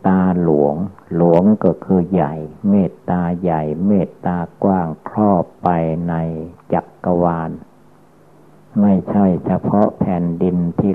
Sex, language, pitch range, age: male, Thai, 85-95 Hz, 60-79